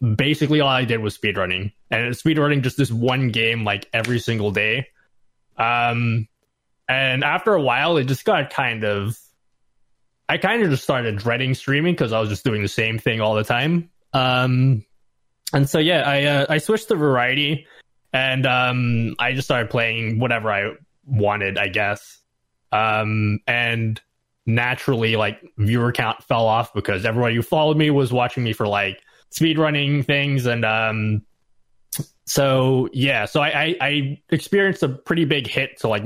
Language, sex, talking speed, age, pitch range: English, male, 170 wpm, 20-39, 110-145 Hz